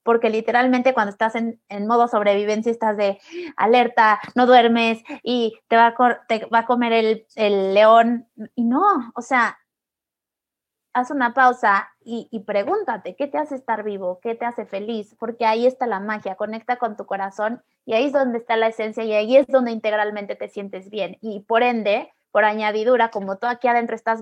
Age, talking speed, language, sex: 20-39, 195 wpm, Spanish, female